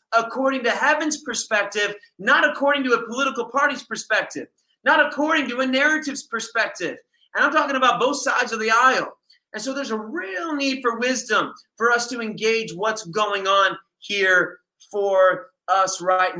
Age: 30-49